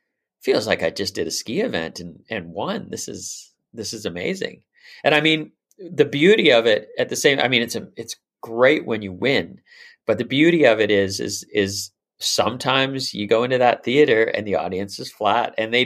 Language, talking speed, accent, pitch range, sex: English, 210 wpm, American, 100-155 Hz, male